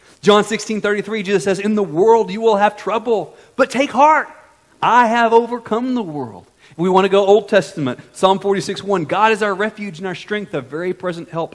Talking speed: 210 wpm